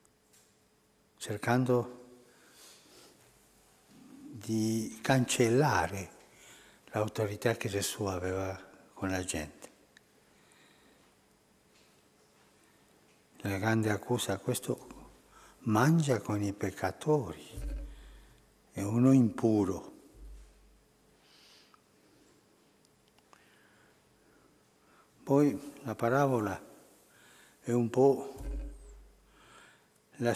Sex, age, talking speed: male, 60-79, 55 wpm